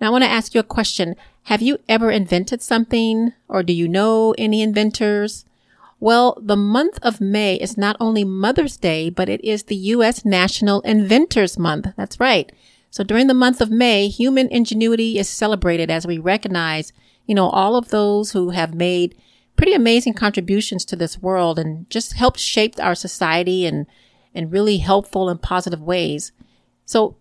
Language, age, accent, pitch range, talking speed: English, 40-59, American, 180-230 Hz, 175 wpm